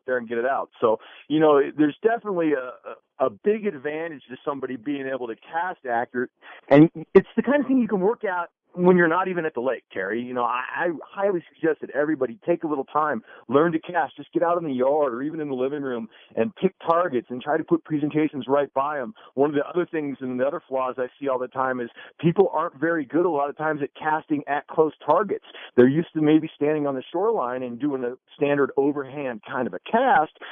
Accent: American